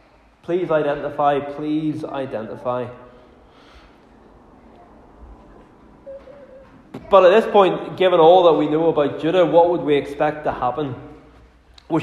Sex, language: male, English